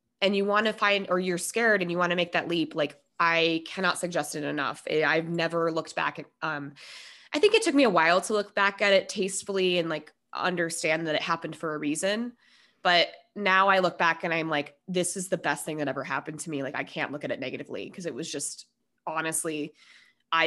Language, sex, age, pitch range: English, female, 20-39, 155-185 Hz